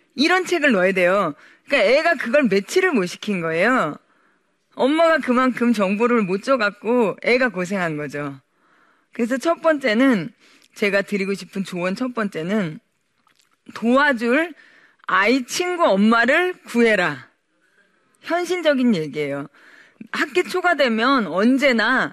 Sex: female